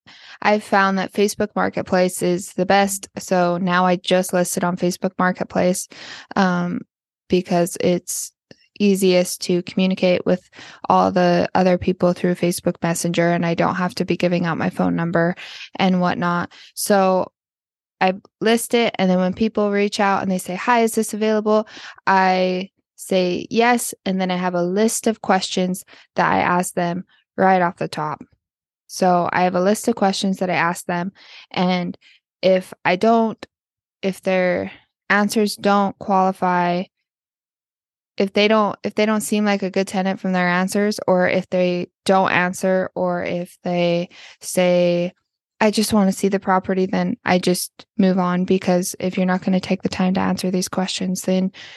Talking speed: 170 wpm